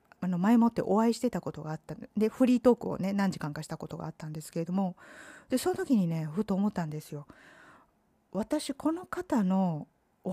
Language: Japanese